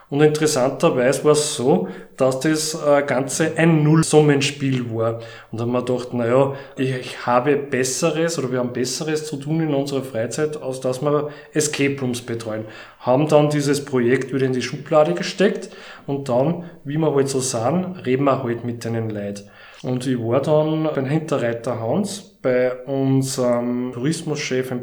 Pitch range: 125-150 Hz